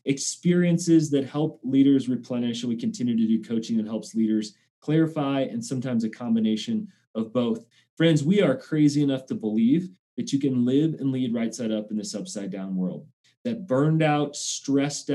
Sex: male